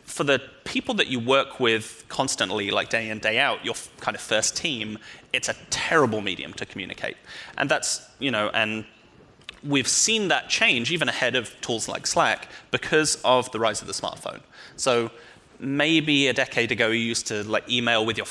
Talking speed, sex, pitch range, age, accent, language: 190 wpm, male, 110-125 Hz, 30-49, British, English